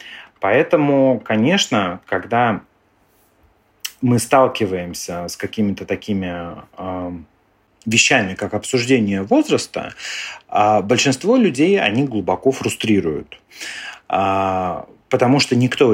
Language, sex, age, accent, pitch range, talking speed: Russian, male, 30-49, native, 100-135 Hz, 75 wpm